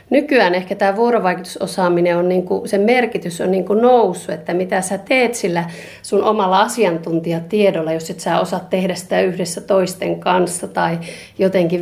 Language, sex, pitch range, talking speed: Finnish, female, 165-200 Hz, 150 wpm